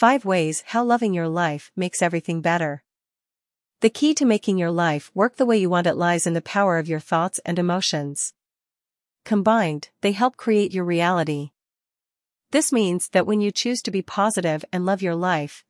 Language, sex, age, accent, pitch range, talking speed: English, female, 40-59, American, 165-210 Hz, 185 wpm